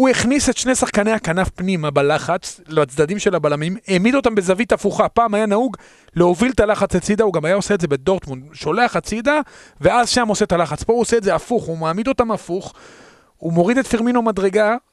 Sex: male